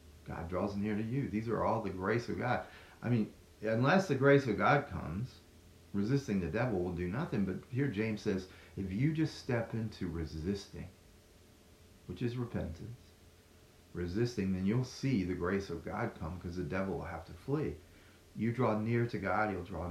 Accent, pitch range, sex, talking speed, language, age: American, 90-115 Hz, male, 185 wpm, English, 40-59